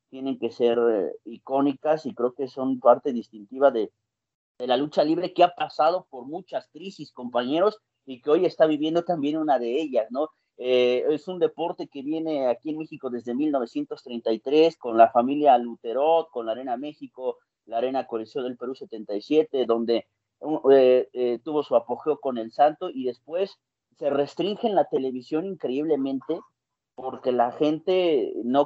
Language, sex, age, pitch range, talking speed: Spanish, male, 40-59, 130-205 Hz, 165 wpm